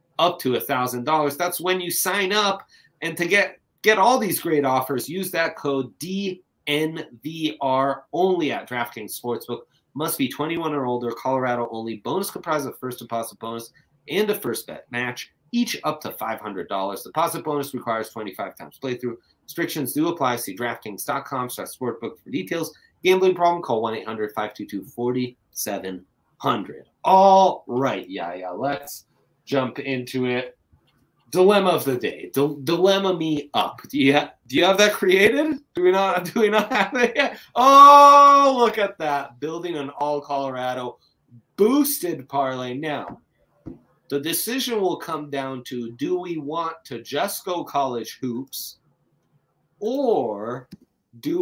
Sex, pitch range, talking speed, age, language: male, 125-185 Hz, 150 wpm, 30-49, English